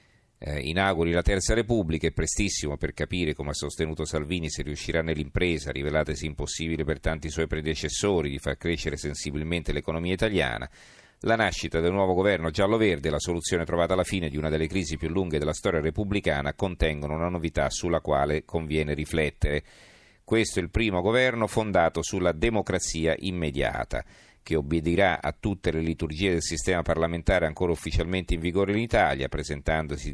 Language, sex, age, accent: Italian, male, 40-59, native